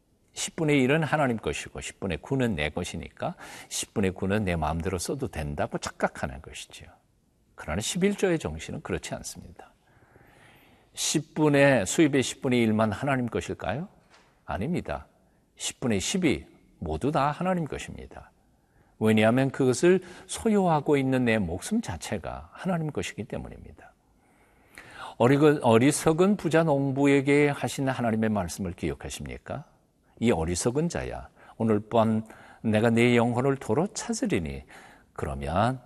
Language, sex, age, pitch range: Korean, male, 50-69, 100-155 Hz